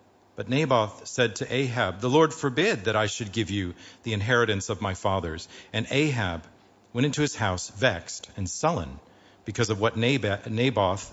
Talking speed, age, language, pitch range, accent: 165 wpm, 50-69, English, 100-125 Hz, American